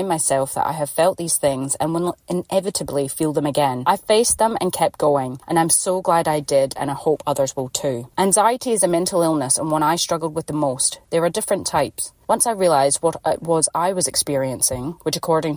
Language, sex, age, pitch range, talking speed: English, female, 30-49, 145-185 Hz, 225 wpm